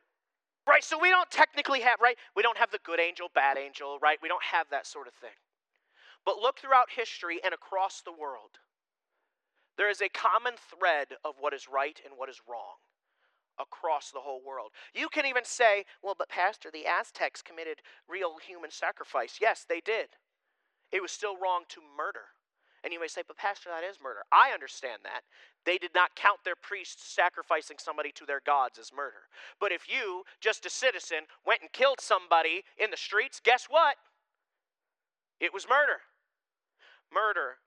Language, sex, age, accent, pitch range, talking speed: English, male, 40-59, American, 175-270 Hz, 180 wpm